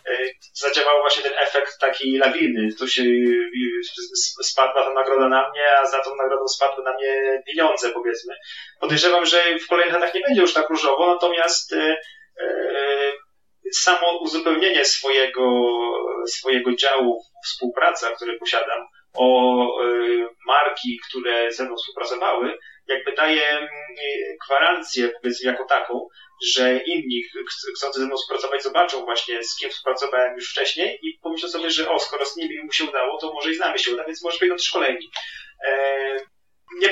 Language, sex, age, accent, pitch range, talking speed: Polish, male, 30-49, native, 130-175 Hz, 140 wpm